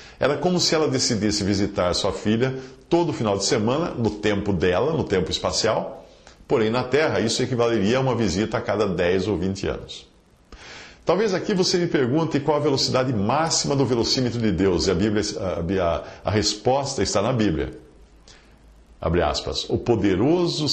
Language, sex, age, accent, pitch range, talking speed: English, male, 50-69, Brazilian, 95-125 Hz, 170 wpm